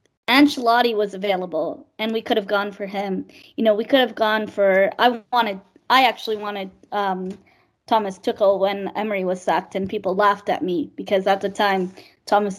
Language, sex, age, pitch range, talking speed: English, female, 20-39, 205-240 Hz, 185 wpm